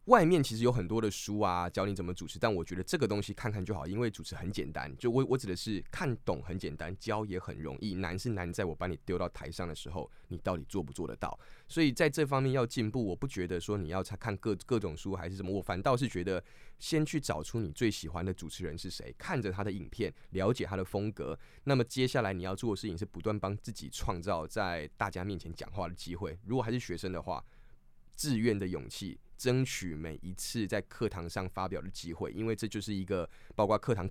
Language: Chinese